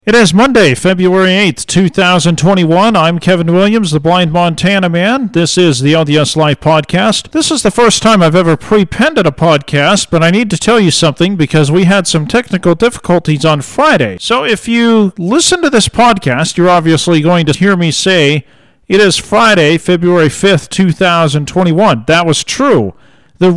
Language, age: English, 40-59